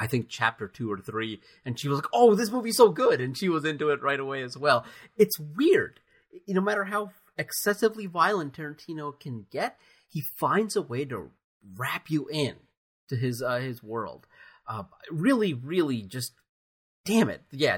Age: 30-49